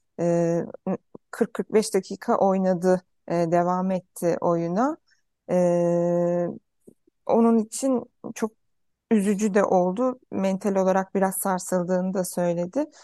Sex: female